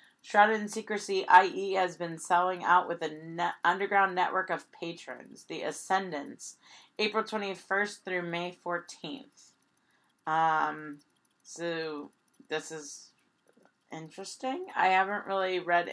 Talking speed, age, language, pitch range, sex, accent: 115 wpm, 30-49, English, 160-195 Hz, female, American